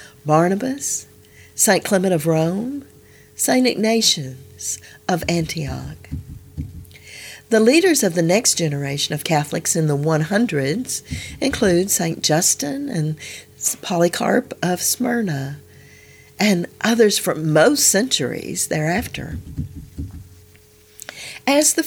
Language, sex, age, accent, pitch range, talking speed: English, female, 50-69, American, 145-210 Hz, 95 wpm